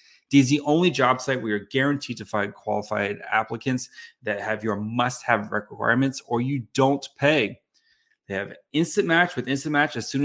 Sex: male